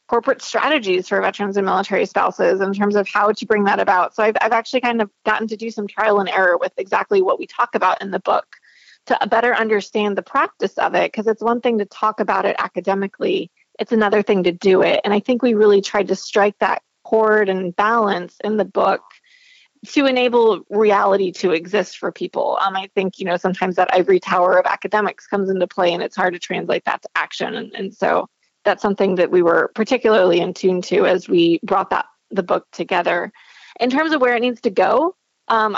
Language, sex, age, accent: English, female, 30-49, American